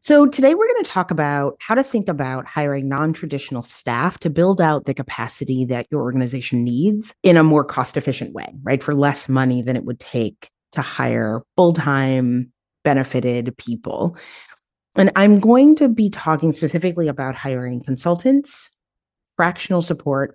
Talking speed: 155 wpm